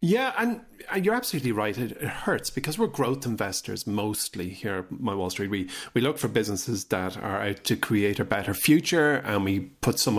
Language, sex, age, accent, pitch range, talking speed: English, male, 40-59, Irish, 100-135 Hz, 195 wpm